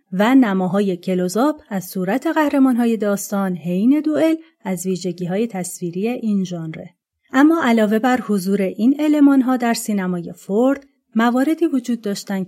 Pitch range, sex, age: 185-250 Hz, female, 30-49